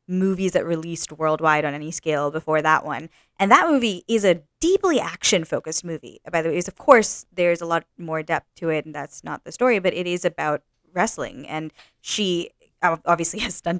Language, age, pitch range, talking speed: English, 20-39, 155-195 Hz, 205 wpm